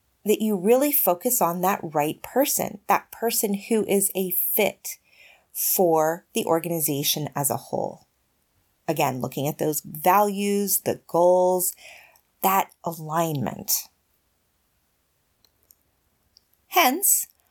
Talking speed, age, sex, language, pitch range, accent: 105 wpm, 30-49, female, English, 135-220 Hz, American